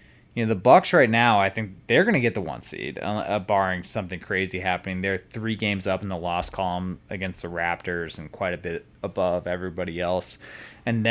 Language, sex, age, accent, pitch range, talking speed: English, male, 30-49, American, 90-105 Hz, 210 wpm